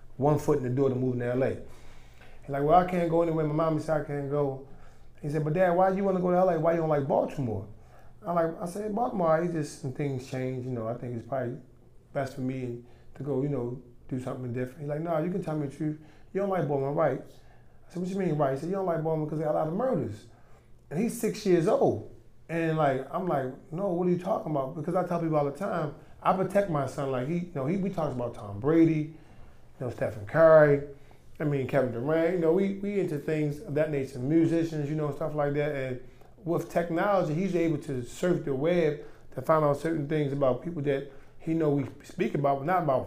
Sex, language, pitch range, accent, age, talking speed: male, English, 135-165 Hz, American, 30-49, 255 wpm